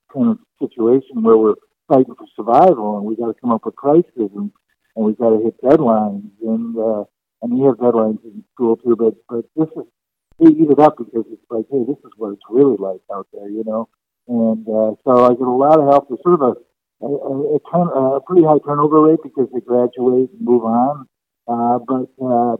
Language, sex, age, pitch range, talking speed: English, male, 60-79, 115-140 Hz, 220 wpm